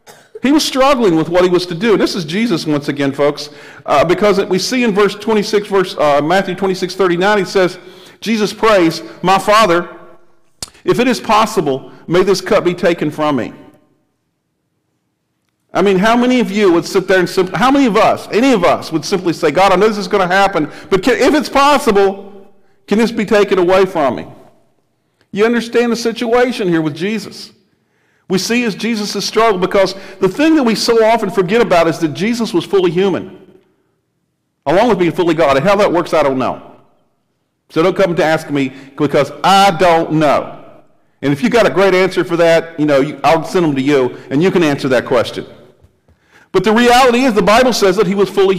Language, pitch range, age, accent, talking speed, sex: English, 170-220 Hz, 50-69, American, 210 wpm, male